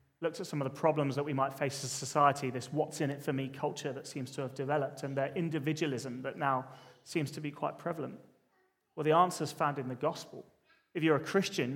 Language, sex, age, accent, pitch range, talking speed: English, male, 30-49, British, 140-170 Hz, 220 wpm